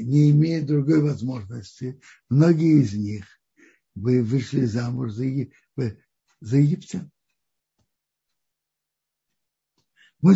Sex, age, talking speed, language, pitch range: male, 60-79, 80 wpm, Russian, 130-180 Hz